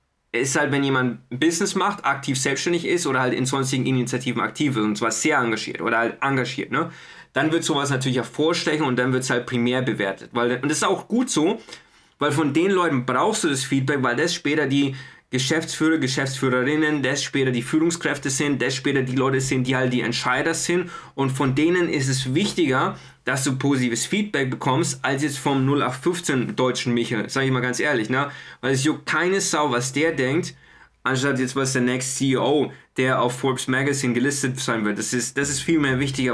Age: 20-39